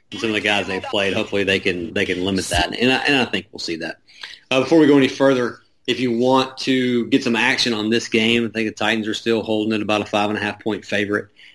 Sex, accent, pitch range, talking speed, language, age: male, American, 100-115 Hz, 260 wpm, English, 30-49